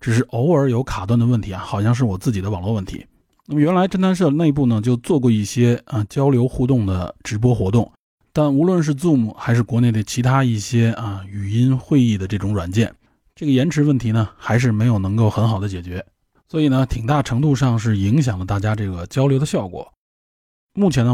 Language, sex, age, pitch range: Chinese, male, 20-39, 105-130 Hz